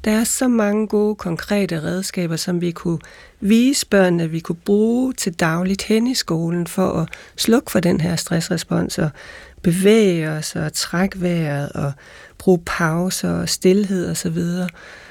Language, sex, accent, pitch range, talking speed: Danish, female, native, 175-205 Hz, 160 wpm